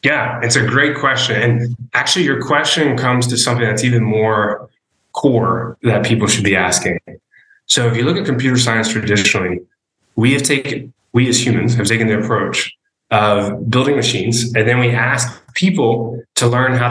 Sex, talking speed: male, 175 wpm